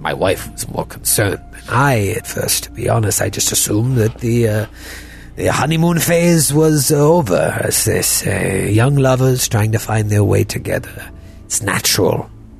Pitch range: 95-130 Hz